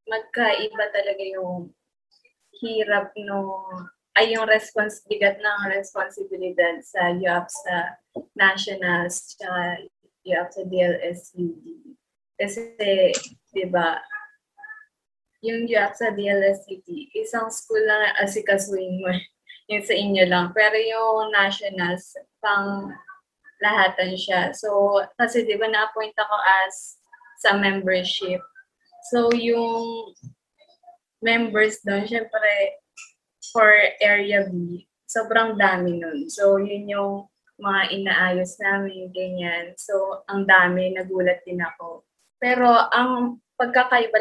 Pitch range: 190-230 Hz